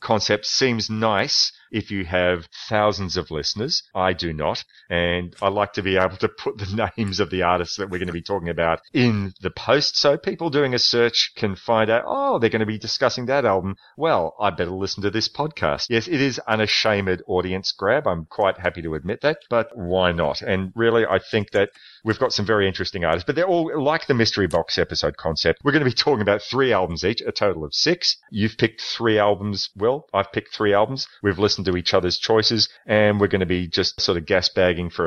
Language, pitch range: English, 90-110 Hz